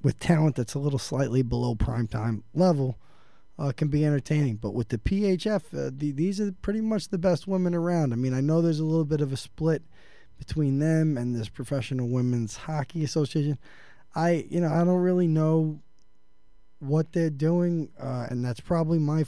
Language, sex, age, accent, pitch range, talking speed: English, male, 20-39, American, 125-160 Hz, 195 wpm